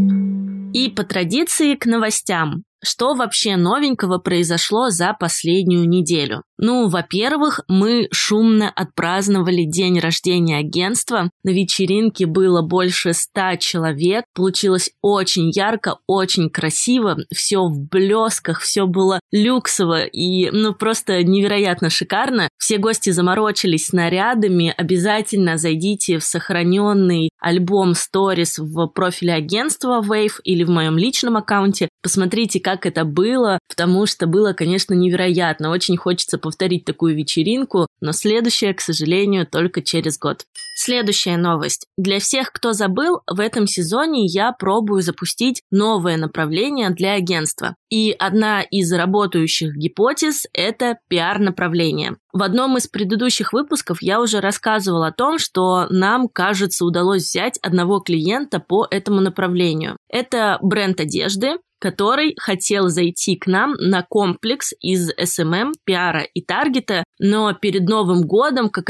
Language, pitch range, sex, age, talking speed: Russian, 175-215 Hz, female, 20-39, 130 wpm